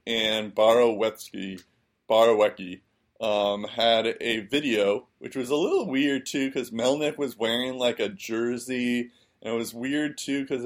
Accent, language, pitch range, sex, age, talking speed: American, English, 100-120 Hz, male, 20-39, 145 wpm